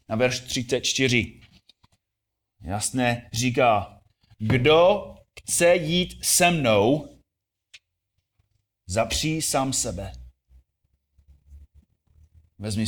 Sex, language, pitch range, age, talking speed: male, Czech, 95-145 Hz, 30-49, 65 wpm